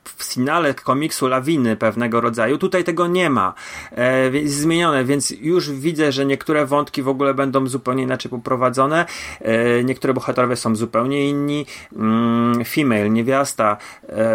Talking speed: 145 wpm